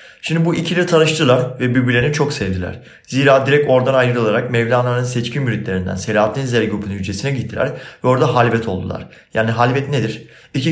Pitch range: 115-150 Hz